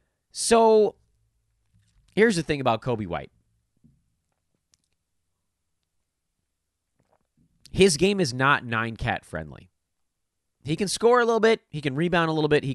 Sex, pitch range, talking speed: male, 90-150 Hz, 120 wpm